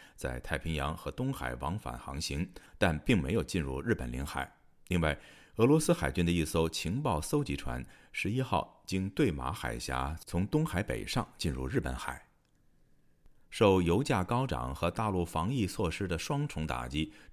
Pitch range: 75-105 Hz